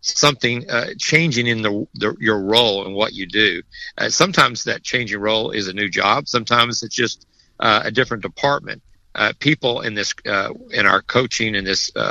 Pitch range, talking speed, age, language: 105-145 Hz, 195 wpm, 50-69, English